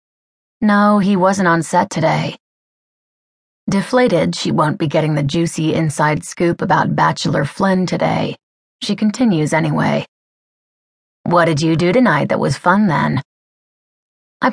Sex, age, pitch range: female, 30-49, 160-195 Hz